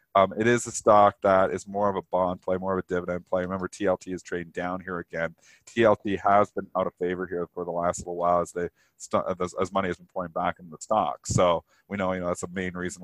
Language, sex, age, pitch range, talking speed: English, male, 40-59, 90-110 Hz, 260 wpm